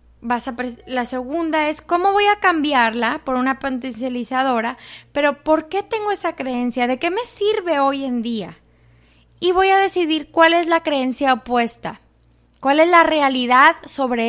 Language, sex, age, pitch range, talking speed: English, female, 20-39, 240-330 Hz, 155 wpm